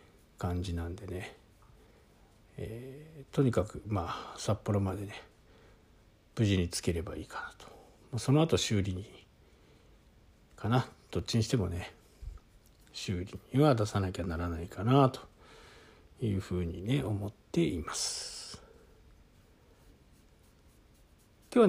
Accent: native